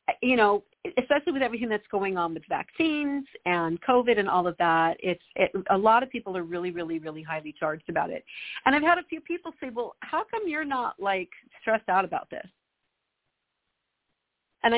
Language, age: English, 50-69